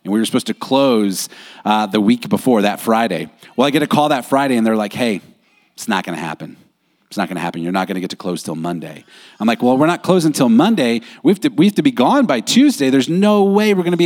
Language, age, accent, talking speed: English, 30-49, American, 270 wpm